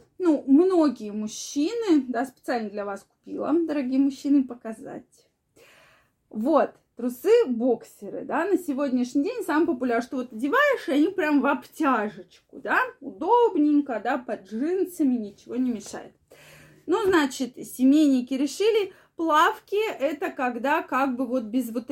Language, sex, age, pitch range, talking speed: Russian, female, 20-39, 240-315 Hz, 130 wpm